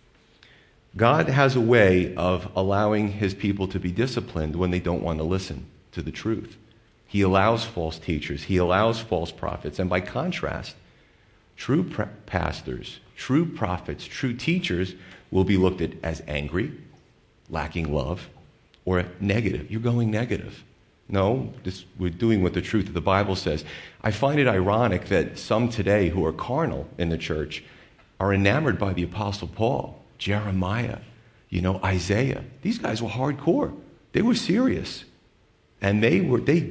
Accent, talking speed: American, 155 wpm